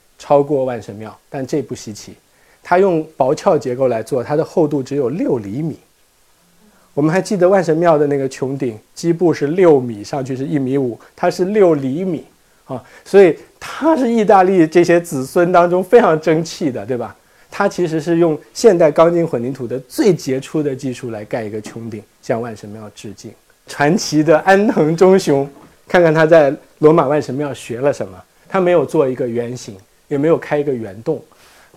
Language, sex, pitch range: Chinese, male, 115-160 Hz